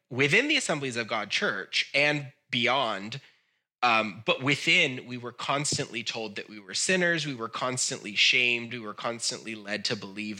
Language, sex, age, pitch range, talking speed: English, male, 20-39, 110-140 Hz, 165 wpm